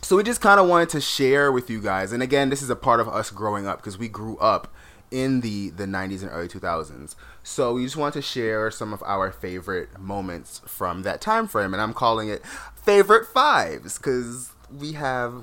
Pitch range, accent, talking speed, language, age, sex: 100-140 Hz, American, 220 wpm, English, 20-39, male